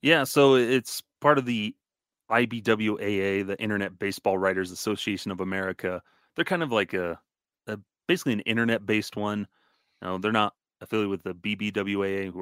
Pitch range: 95-105 Hz